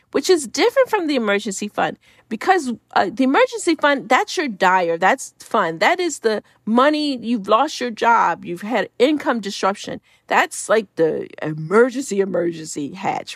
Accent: American